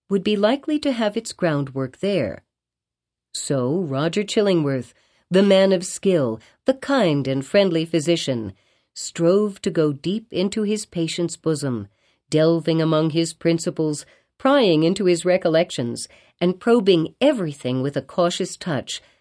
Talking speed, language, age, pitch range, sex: 135 wpm, English, 50-69, 150-205 Hz, female